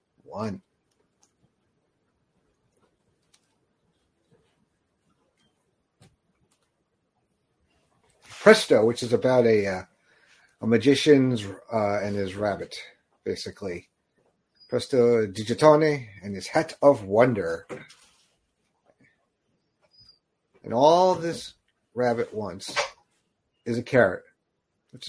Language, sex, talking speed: English, male, 70 wpm